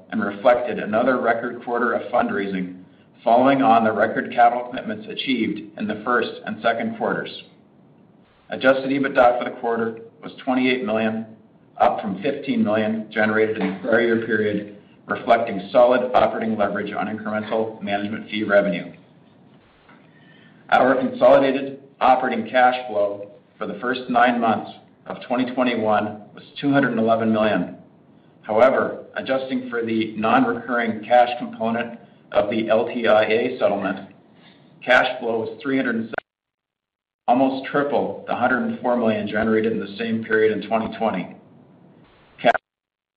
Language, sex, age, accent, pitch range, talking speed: English, male, 50-69, American, 105-125 Hz, 125 wpm